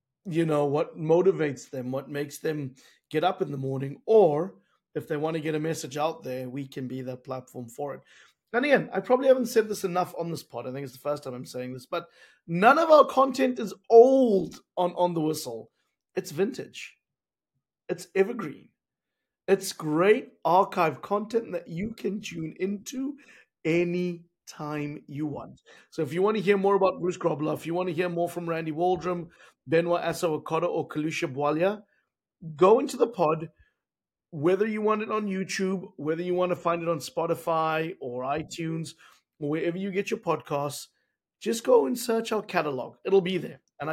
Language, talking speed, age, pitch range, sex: English, 185 wpm, 30-49, 155-195 Hz, male